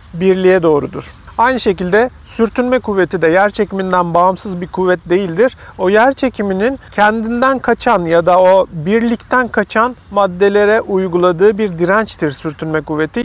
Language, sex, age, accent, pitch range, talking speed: Turkish, male, 40-59, native, 180-225 Hz, 130 wpm